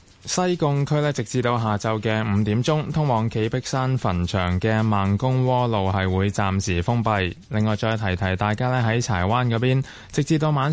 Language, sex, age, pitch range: Chinese, male, 20-39, 100-130 Hz